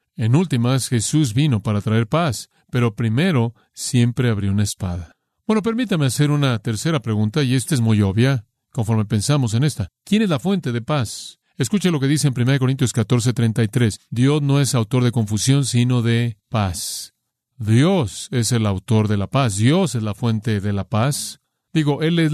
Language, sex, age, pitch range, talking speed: Spanish, male, 40-59, 110-135 Hz, 185 wpm